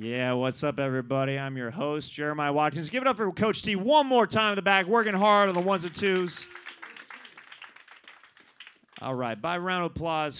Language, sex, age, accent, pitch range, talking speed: English, male, 30-49, American, 125-175 Hz, 195 wpm